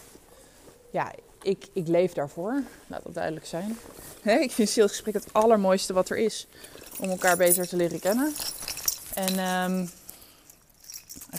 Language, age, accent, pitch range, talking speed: Dutch, 20-39, Dutch, 180-225 Hz, 135 wpm